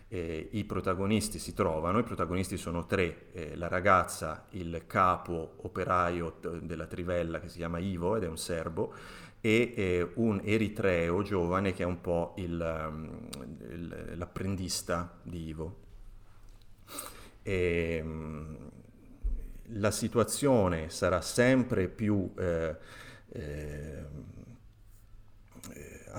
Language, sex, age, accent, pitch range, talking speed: Italian, male, 30-49, native, 85-105 Hz, 100 wpm